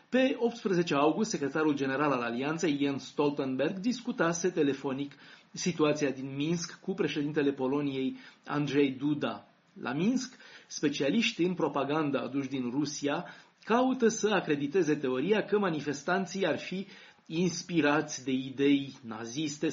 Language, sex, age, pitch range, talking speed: Romanian, male, 30-49, 140-185 Hz, 120 wpm